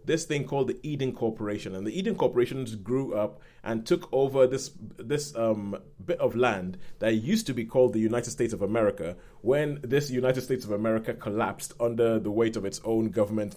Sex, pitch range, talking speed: male, 110-135 Hz, 200 wpm